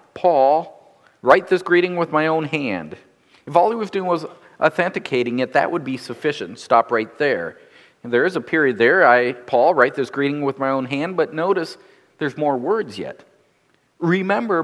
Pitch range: 140-205 Hz